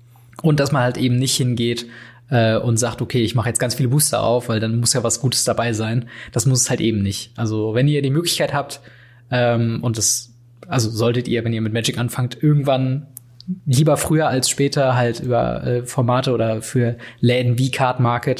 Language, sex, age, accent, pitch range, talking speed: German, male, 20-39, German, 115-135 Hz, 210 wpm